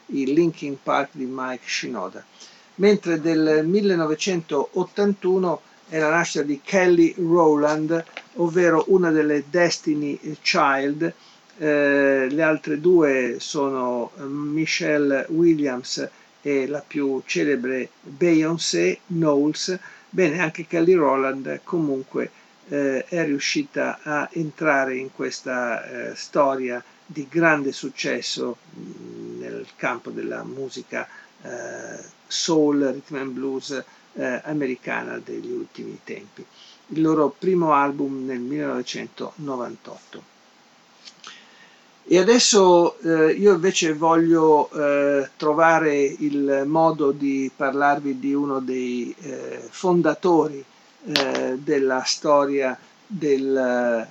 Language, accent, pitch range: Italian, native, 135-170 Hz